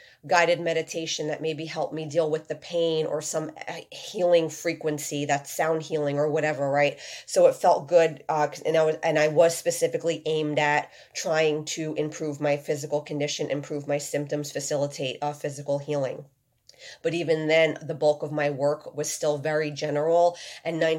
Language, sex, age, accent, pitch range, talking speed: English, female, 30-49, American, 145-160 Hz, 170 wpm